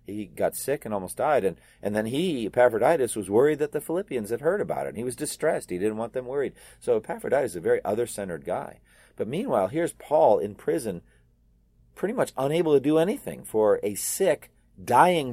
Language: English